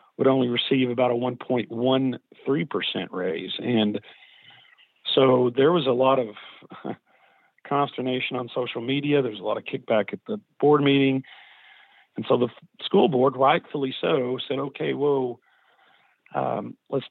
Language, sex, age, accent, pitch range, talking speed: English, male, 40-59, American, 125-145 Hz, 135 wpm